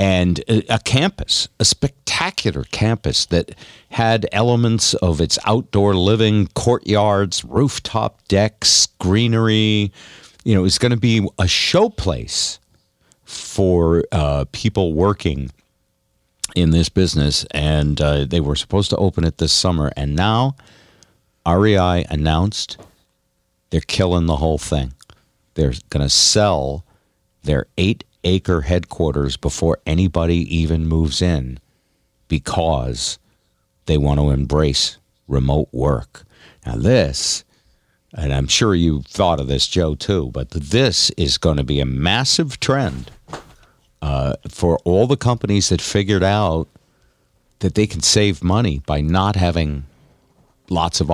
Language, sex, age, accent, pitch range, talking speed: English, male, 50-69, American, 75-105 Hz, 130 wpm